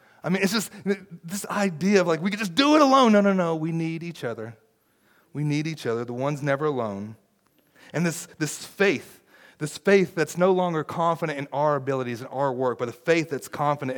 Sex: male